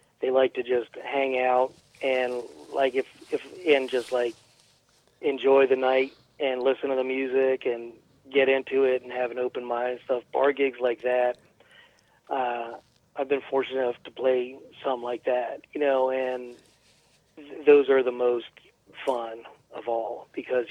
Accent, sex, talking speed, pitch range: American, male, 165 wpm, 120-135 Hz